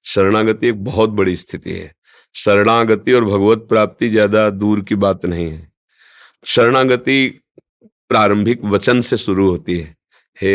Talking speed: 135 wpm